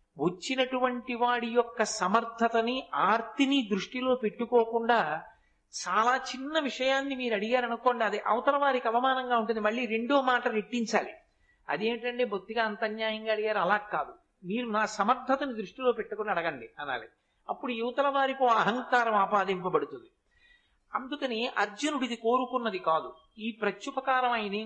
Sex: male